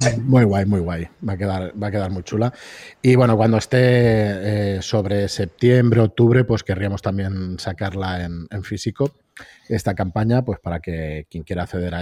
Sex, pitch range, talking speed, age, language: male, 100-125 Hz, 180 wpm, 30-49, Spanish